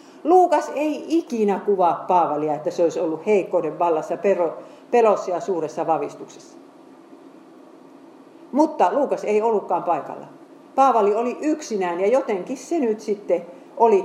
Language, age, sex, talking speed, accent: Finnish, 50-69, female, 125 wpm, native